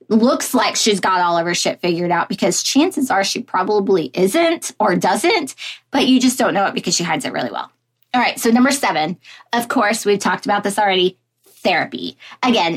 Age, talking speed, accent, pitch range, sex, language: 20-39, 205 wpm, American, 200-275 Hz, female, English